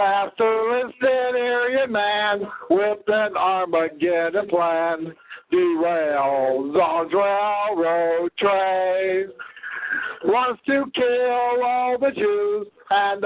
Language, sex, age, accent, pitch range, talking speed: English, male, 60-79, American, 175-245 Hz, 80 wpm